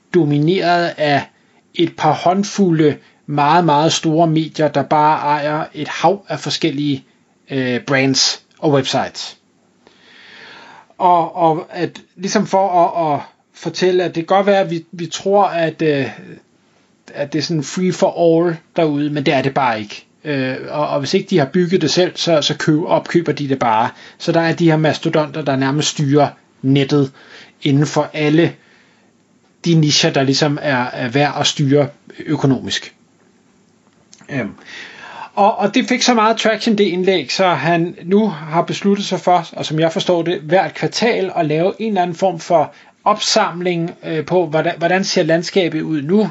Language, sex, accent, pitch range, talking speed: Danish, male, native, 150-185 Hz, 165 wpm